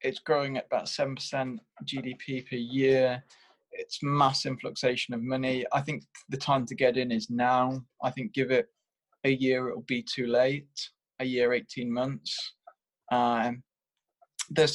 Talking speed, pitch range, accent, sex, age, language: 155 wpm, 120-155 Hz, British, male, 20-39, English